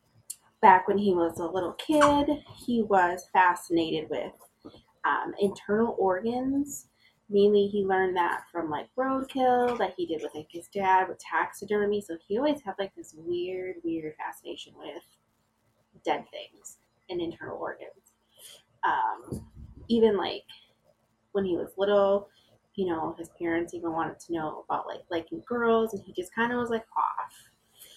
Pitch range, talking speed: 170-235 Hz, 155 wpm